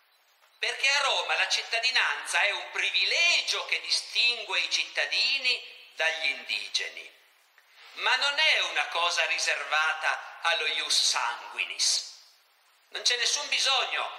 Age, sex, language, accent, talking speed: 50-69, male, Italian, native, 115 wpm